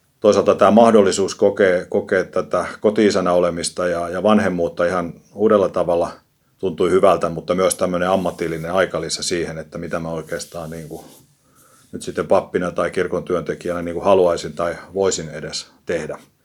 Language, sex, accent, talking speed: Finnish, male, native, 150 wpm